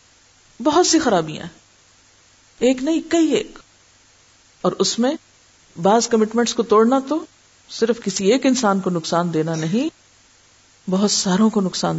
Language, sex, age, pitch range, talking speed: Urdu, female, 50-69, 150-220 Hz, 135 wpm